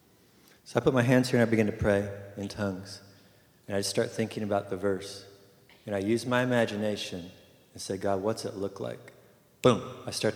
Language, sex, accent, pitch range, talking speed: English, male, American, 100-120 Hz, 210 wpm